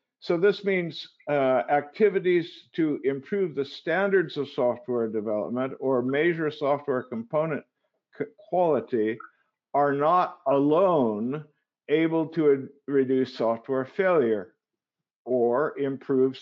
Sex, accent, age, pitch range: male, American, 50-69, 130-170 Hz